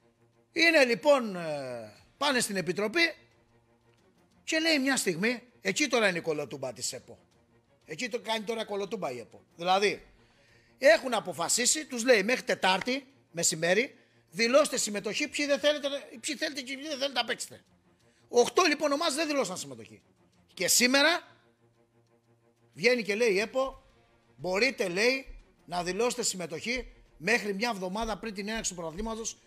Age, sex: 30-49, male